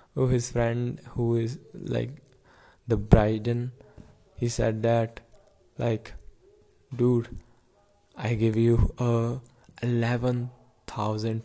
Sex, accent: male, Indian